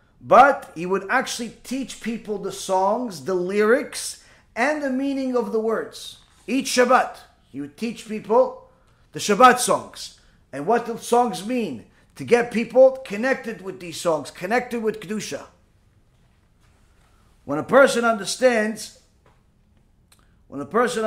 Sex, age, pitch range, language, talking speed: male, 40-59, 170-230 Hz, English, 135 wpm